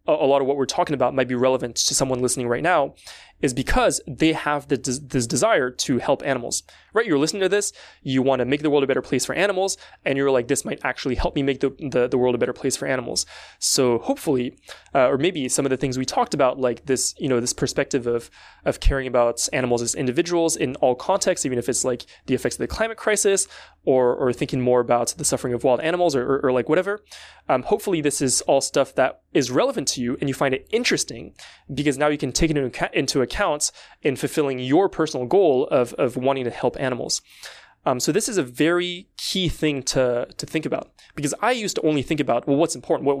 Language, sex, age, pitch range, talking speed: English, male, 20-39, 130-160 Hz, 235 wpm